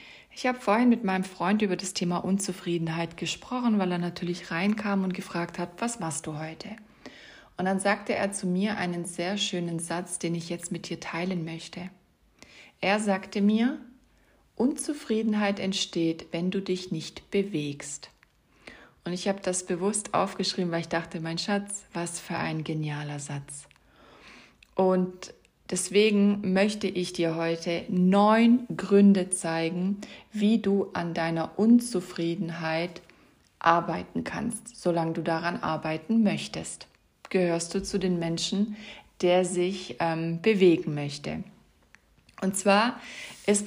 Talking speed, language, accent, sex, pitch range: 135 wpm, German, German, female, 170-205 Hz